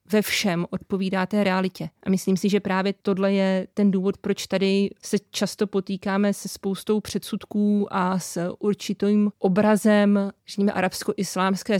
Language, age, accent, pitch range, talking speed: Czech, 30-49, native, 185-200 Hz, 135 wpm